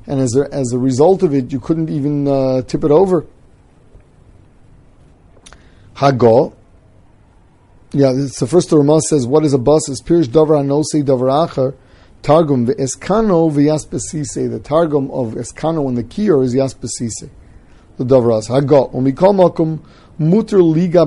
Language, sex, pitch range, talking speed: English, male, 125-155 Hz, 150 wpm